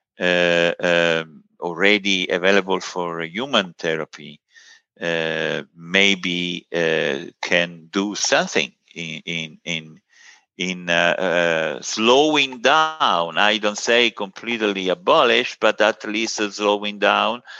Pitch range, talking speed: 85-110 Hz, 100 wpm